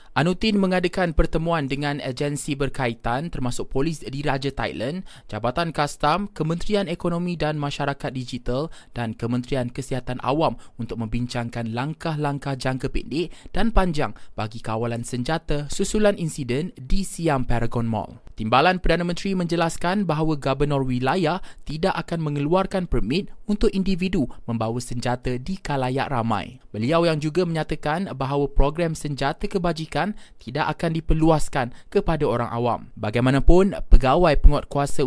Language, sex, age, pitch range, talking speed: Malay, male, 20-39, 125-170 Hz, 125 wpm